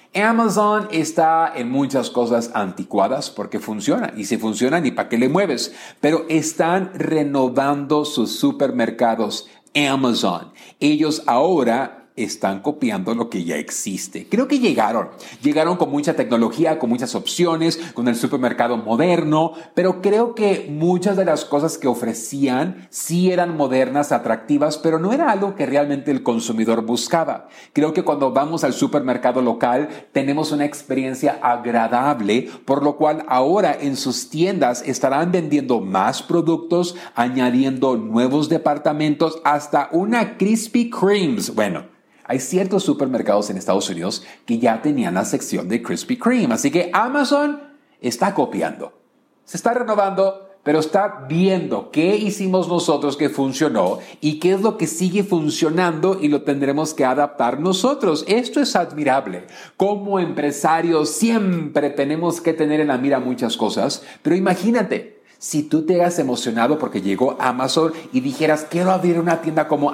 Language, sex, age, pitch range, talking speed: Spanish, male, 40-59, 135-185 Hz, 145 wpm